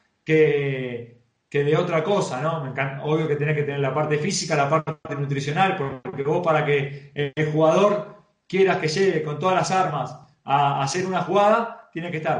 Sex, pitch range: male, 150-195 Hz